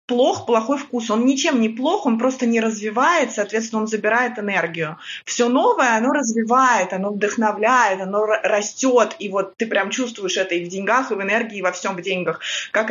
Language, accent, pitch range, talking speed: Russian, native, 200-250 Hz, 185 wpm